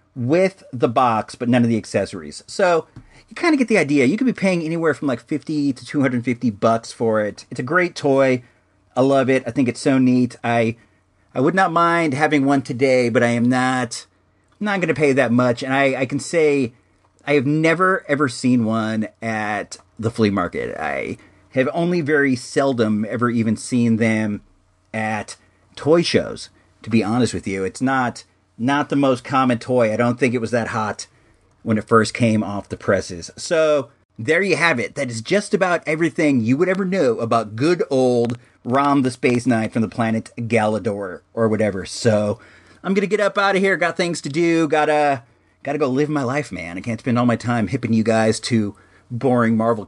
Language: English